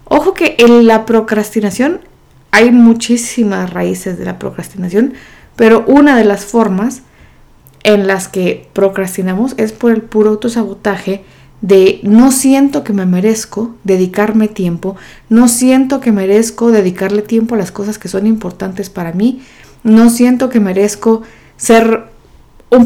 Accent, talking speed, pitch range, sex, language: Mexican, 140 wpm, 200-240 Hz, female, Spanish